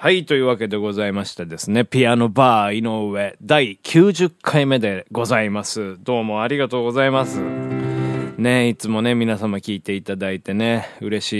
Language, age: Japanese, 20-39